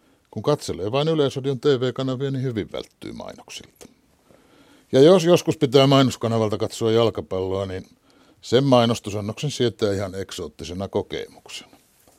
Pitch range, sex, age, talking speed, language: 100-140 Hz, male, 60-79, 115 wpm, Finnish